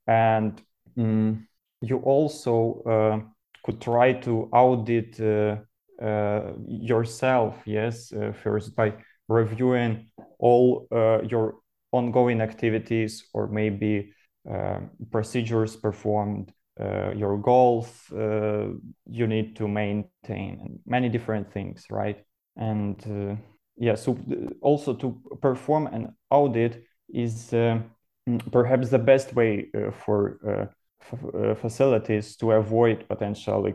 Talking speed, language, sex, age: 110 wpm, English, male, 20-39